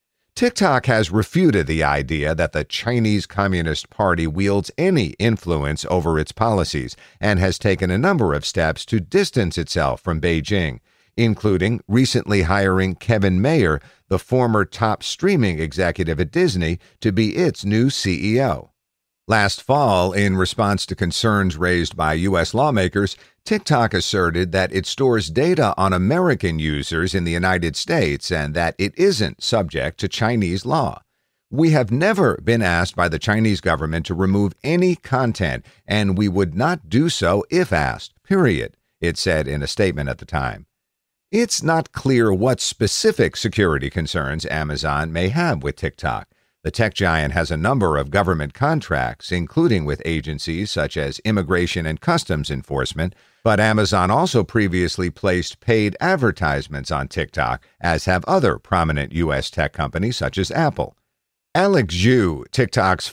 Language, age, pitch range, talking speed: English, 50-69, 85-115 Hz, 150 wpm